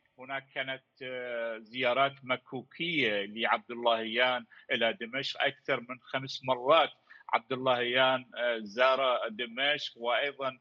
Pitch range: 125-145 Hz